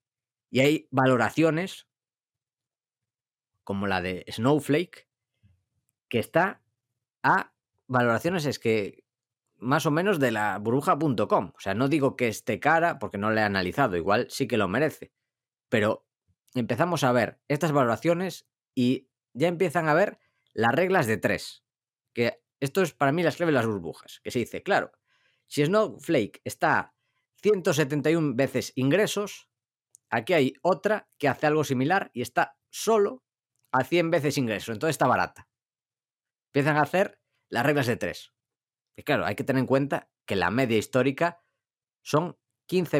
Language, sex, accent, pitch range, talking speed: Spanish, female, Spanish, 115-155 Hz, 150 wpm